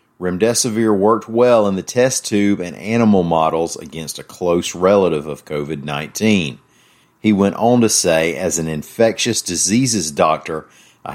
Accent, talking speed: American, 145 wpm